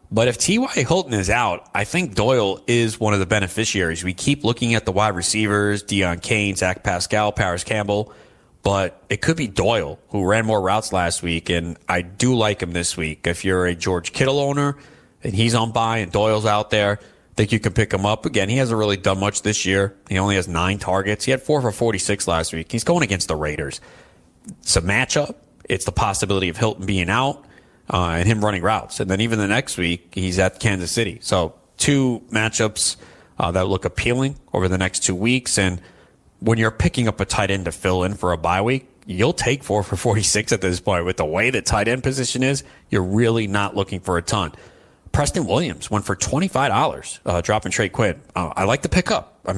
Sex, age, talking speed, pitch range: male, 30-49, 220 wpm, 95-115 Hz